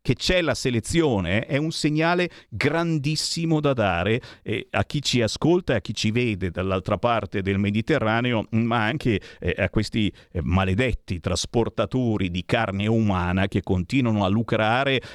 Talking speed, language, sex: 155 wpm, Italian, male